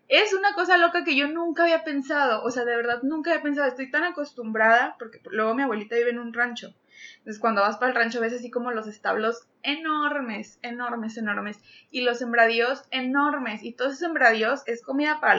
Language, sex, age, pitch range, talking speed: Spanish, female, 20-39, 230-285 Hz, 205 wpm